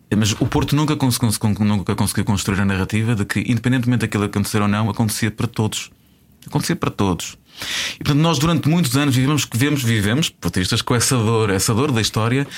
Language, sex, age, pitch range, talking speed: Portuguese, male, 20-39, 100-130 Hz, 190 wpm